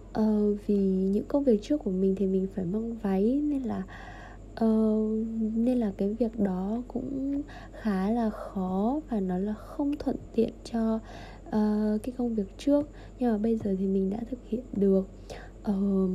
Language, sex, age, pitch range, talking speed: Vietnamese, female, 20-39, 195-245 Hz, 180 wpm